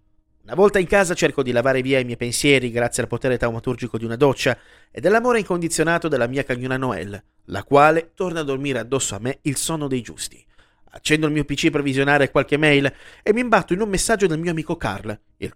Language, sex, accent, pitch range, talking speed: Italian, male, native, 125-170 Hz, 215 wpm